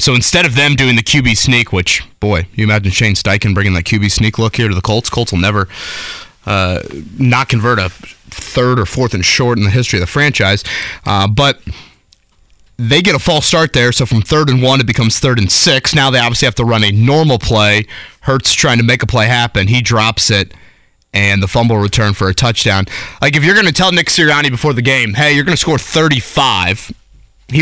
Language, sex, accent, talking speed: English, male, American, 225 wpm